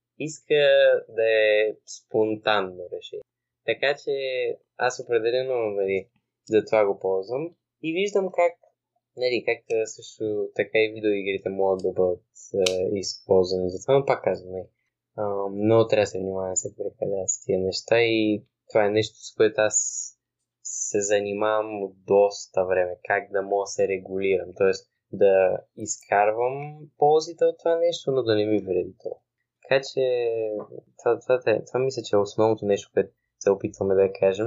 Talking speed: 155 wpm